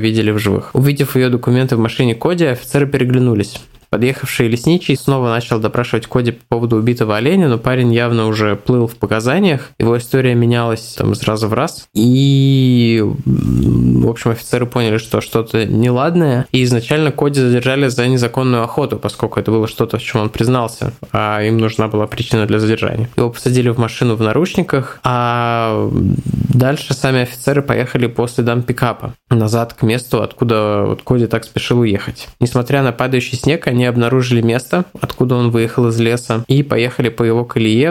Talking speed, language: 165 wpm, Russian